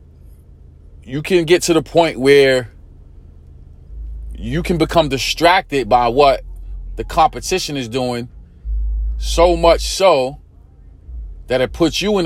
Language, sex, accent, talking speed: English, male, American, 120 wpm